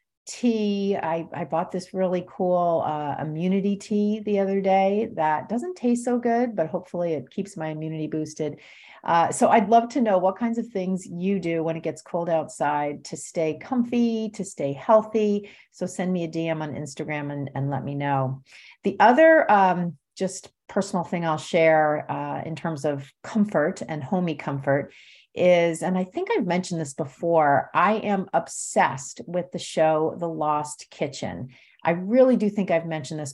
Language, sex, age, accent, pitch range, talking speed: English, female, 40-59, American, 150-190 Hz, 180 wpm